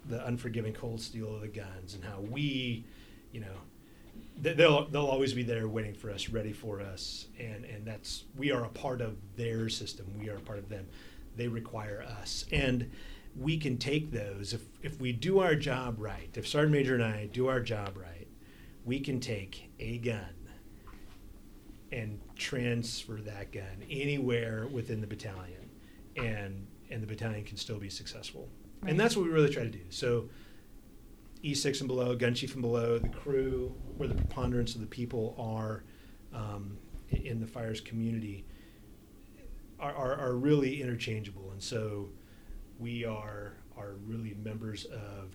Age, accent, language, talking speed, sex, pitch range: 30-49, American, English, 170 wpm, male, 100-125 Hz